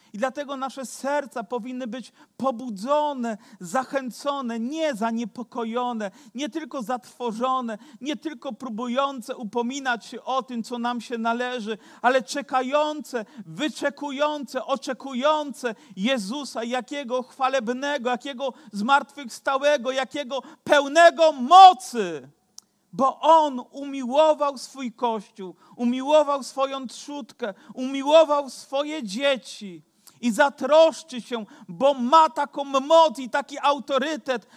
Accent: native